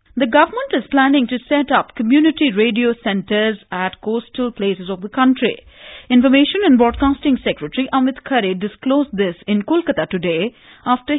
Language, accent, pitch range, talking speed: English, Indian, 135-215 Hz, 150 wpm